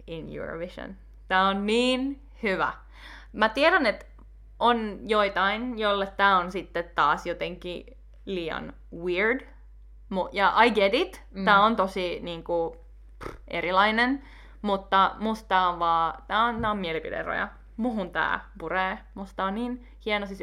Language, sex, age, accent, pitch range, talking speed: Finnish, female, 20-39, native, 180-215 Hz, 125 wpm